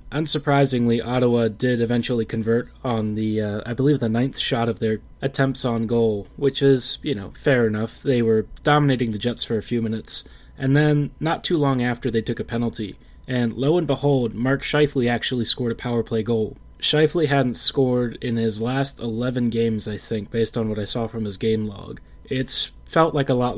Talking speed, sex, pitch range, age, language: 200 wpm, male, 110-130 Hz, 20-39, English